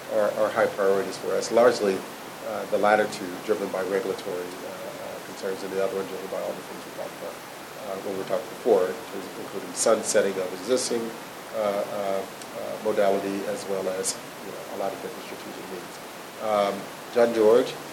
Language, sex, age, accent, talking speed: English, male, 40-59, American, 185 wpm